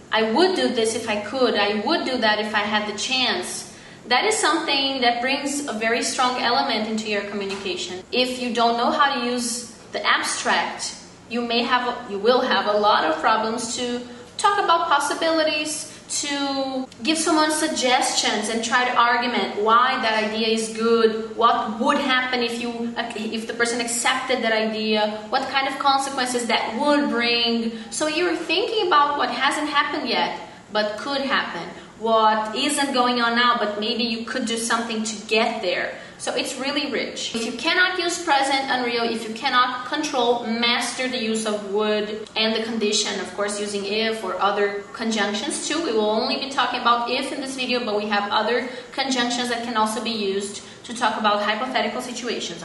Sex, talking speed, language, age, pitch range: female, 185 wpm, English, 20-39, 220-270 Hz